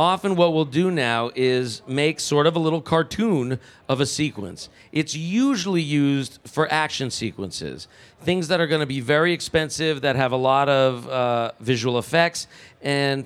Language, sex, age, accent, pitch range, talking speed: English, male, 40-59, American, 125-160 Hz, 170 wpm